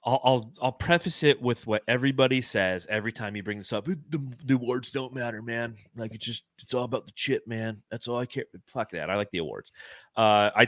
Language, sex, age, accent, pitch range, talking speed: English, male, 30-49, American, 95-125 Hz, 240 wpm